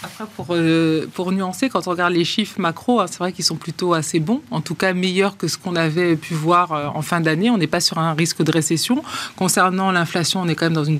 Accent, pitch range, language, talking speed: French, 160-190 Hz, French, 265 wpm